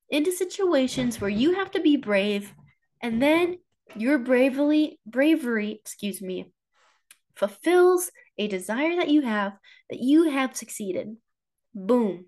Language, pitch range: English, 205-310 Hz